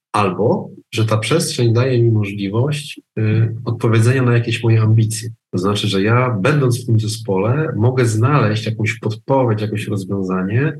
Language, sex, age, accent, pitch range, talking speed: Polish, male, 40-59, native, 100-120 Hz, 150 wpm